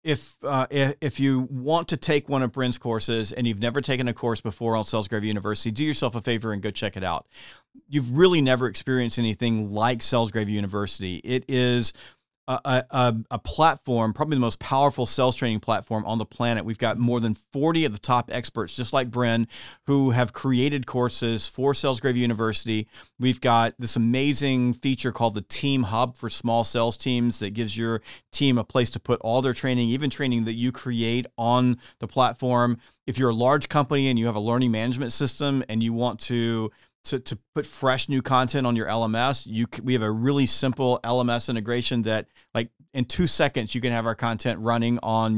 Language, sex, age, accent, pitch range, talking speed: English, male, 40-59, American, 115-135 Hz, 200 wpm